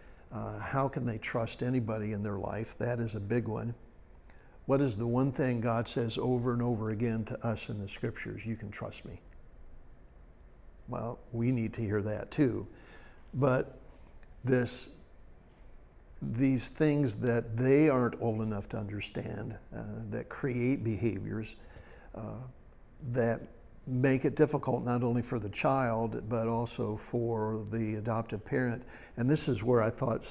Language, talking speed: English, 155 wpm